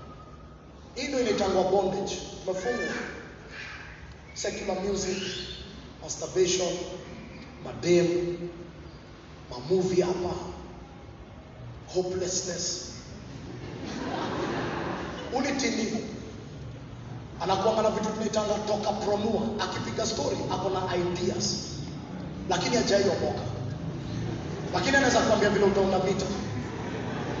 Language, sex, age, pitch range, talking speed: English, male, 30-49, 170-210 Hz, 65 wpm